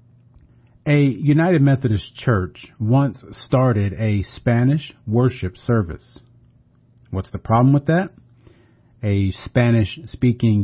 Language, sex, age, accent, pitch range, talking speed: English, male, 40-59, American, 105-130 Hz, 95 wpm